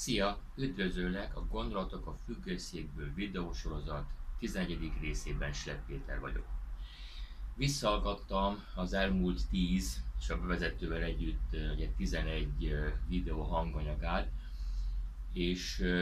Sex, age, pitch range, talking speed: male, 30-49, 75-95 Hz, 90 wpm